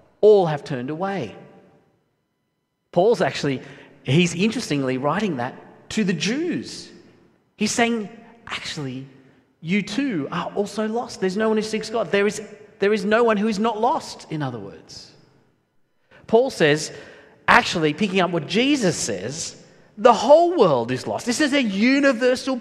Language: English